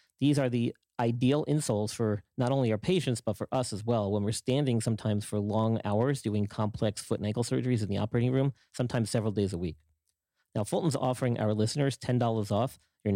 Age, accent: 40-59, American